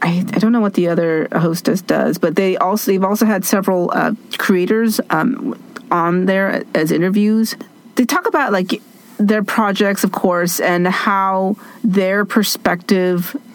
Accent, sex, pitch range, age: American, female, 175-225 Hz, 40-59